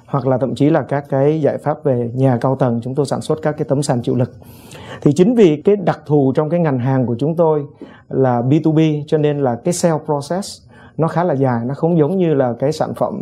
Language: Vietnamese